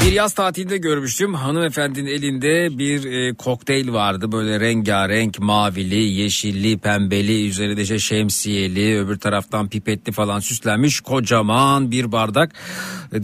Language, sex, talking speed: Turkish, male, 120 wpm